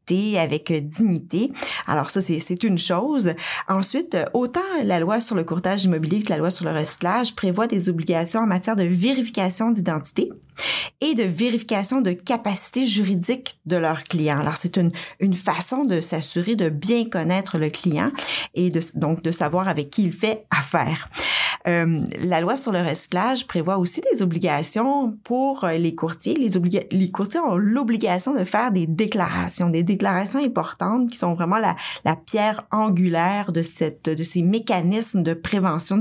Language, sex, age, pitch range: French, female, 40-59, 165-215 Hz